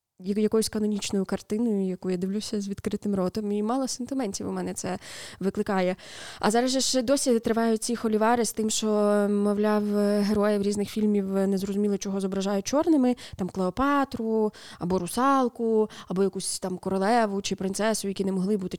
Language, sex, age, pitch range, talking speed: Ukrainian, female, 20-39, 190-220 Hz, 155 wpm